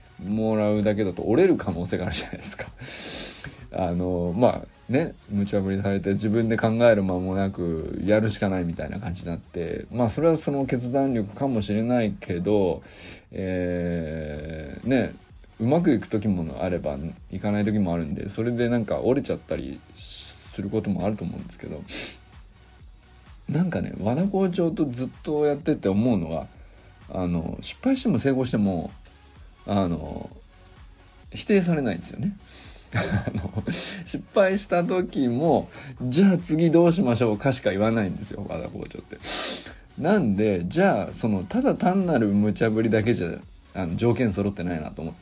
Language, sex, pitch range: Japanese, male, 90-145 Hz